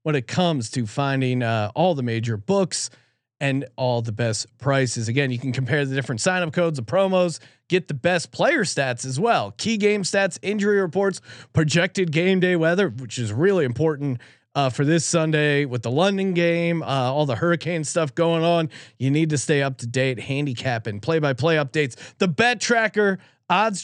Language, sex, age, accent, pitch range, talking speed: English, male, 30-49, American, 130-180 Hz, 190 wpm